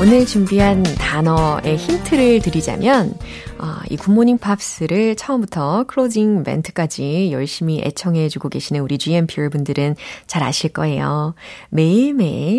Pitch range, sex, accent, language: 145-225 Hz, female, native, Korean